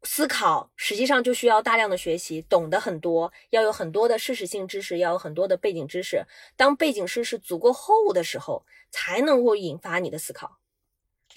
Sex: female